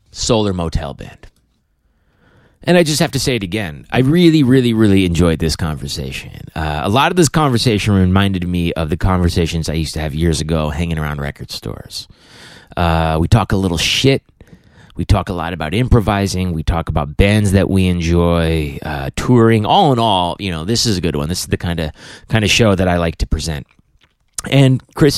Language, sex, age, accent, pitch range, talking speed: English, male, 30-49, American, 85-115 Hz, 205 wpm